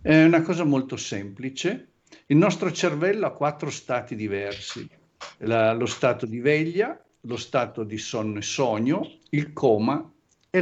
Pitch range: 115-165 Hz